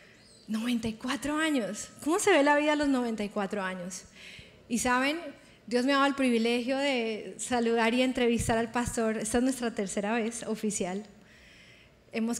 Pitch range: 210-255 Hz